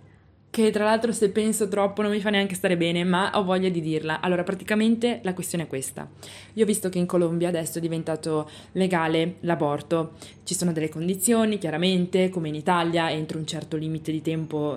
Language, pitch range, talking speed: Italian, 170-215 Hz, 195 wpm